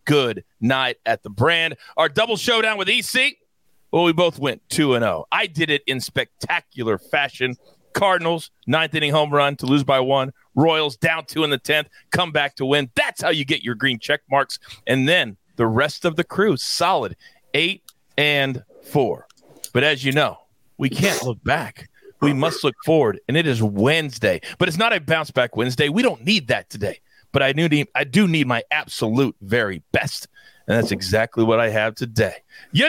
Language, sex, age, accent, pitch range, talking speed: English, male, 40-59, American, 125-180 Hz, 195 wpm